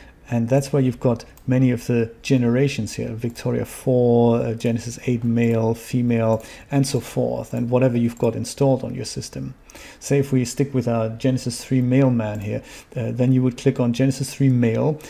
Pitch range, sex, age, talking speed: 120-135 Hz, male, 40-59, 190 wpm